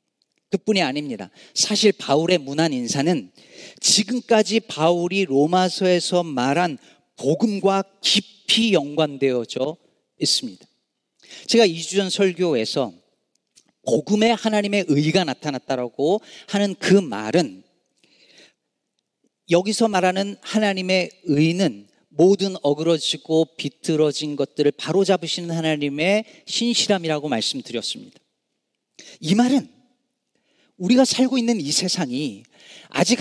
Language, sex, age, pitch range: Korean, male, 40-59, 155-220 Hz